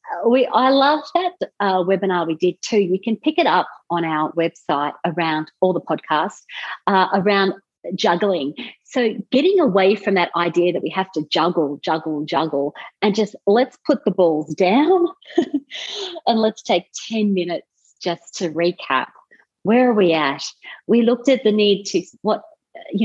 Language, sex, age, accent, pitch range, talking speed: English, female, 40-59, Australian, 160-220 Hz, 165 wpm